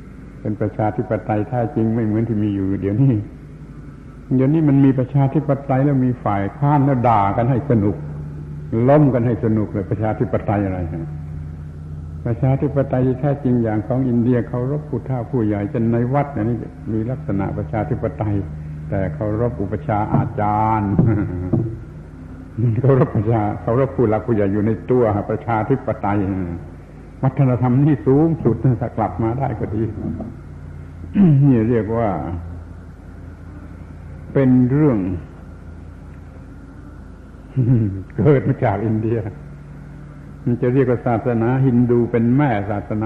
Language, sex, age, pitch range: Thai, male, 70-89, 100-130 Hz